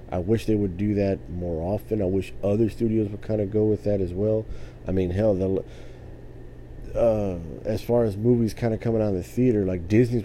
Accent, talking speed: American, 215 wpm